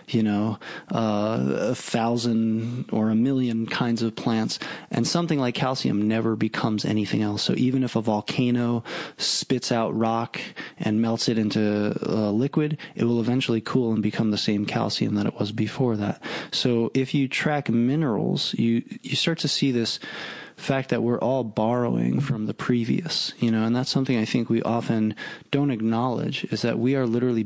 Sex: male